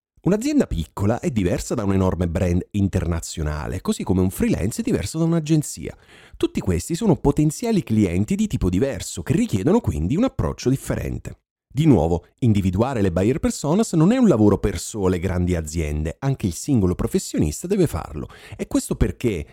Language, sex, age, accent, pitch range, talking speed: Italian, male, 40-59, native, 95-155 Hz, 165 wpm